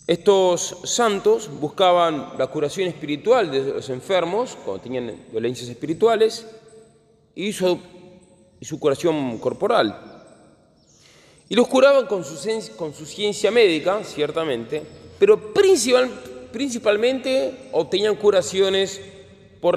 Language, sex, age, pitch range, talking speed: Spanish, male, 30-49, 145-215 Hz, 95 wpm